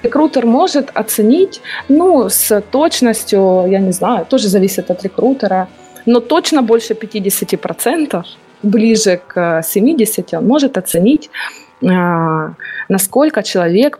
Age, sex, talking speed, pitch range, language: 20-39, female, 105 wpm, 180-245 Hz, Russian